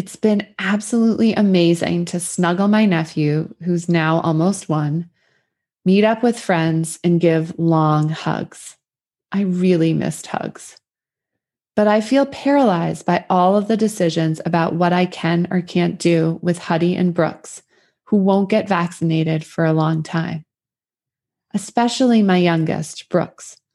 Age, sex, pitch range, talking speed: 20-39, female, 160-200 Hz, 140 wpm